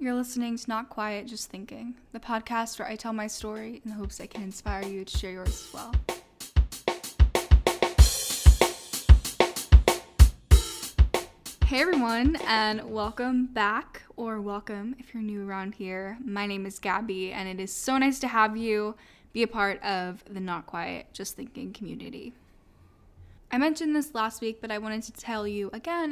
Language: English